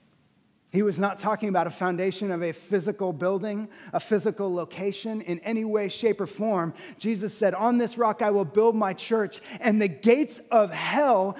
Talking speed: 185 wpm